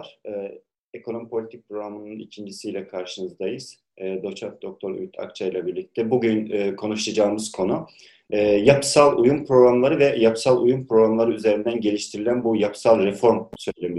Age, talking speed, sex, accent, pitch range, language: 40-59, 135 wpm, male, native, 105-125 Hz, Turkish